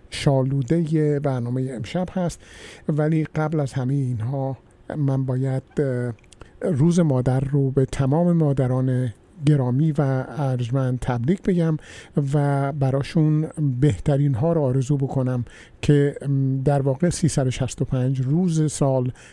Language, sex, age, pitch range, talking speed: Persian, male, 50-69, 130-155 Hz, 115 wpm